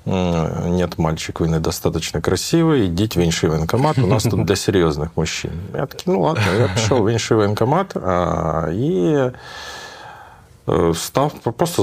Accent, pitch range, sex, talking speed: native, 80-115 Hz, male, 140 wpm